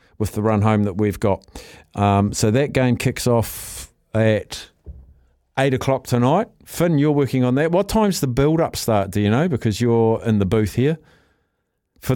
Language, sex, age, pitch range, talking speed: English, male, 50-69, 100-130 Hz, 185 wpm